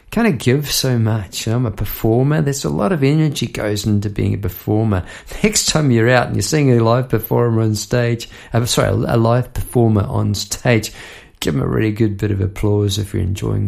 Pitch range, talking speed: 100-125 Hz, 230 wpm